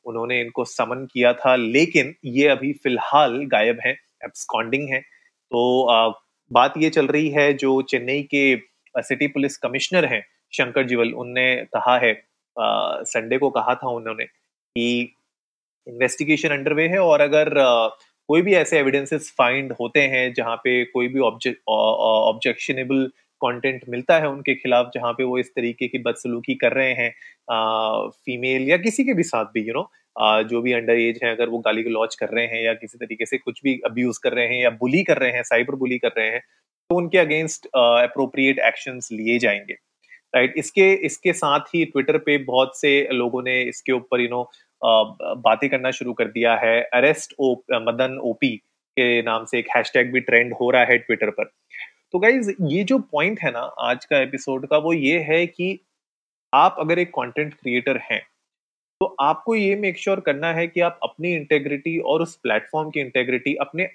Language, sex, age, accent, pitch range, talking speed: Hindi, male, 30-49, native, 120-150 Hz, 185 wpm